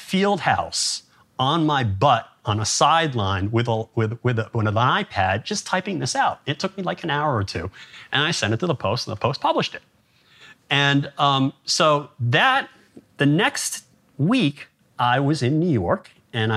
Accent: American